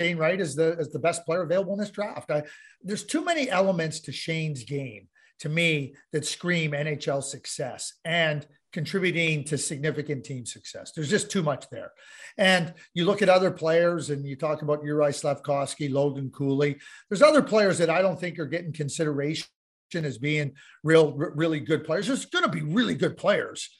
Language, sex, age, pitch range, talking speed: English, male, 40-59, 150-220 Hz, 190 wpm